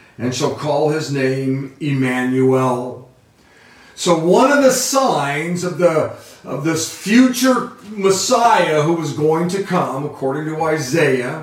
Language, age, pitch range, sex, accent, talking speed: English, 50-69, 130-180 Hz, male, American, 130 wpm